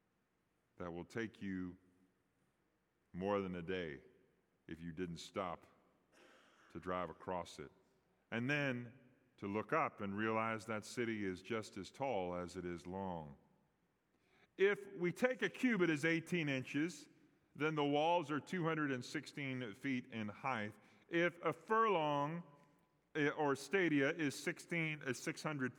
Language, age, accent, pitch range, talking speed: English, 30-49, American, 105-145 Hz, 135 wpm